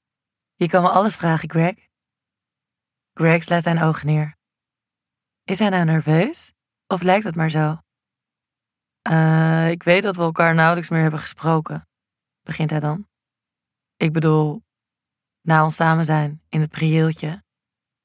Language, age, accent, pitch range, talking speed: Dutch, 20-39, Dutch, 160-180 Hz, 140 wpm